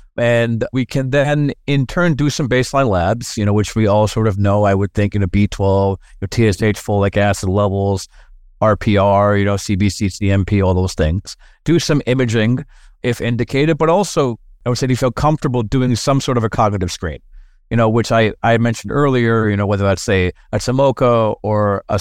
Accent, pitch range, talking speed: American, 100-130 Hz, 200 wpm